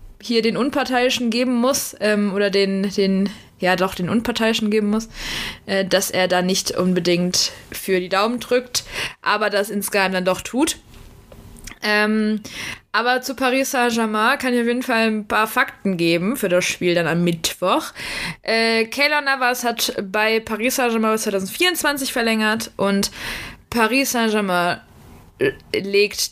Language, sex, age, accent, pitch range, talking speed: German, female, 20-39, German, 195-250 Hz, 145 wpm